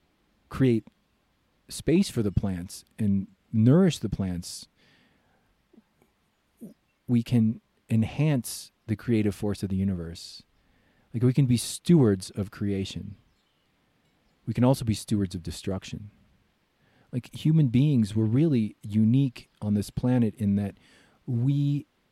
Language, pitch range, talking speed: English, 95-120 Hz, 120 wpm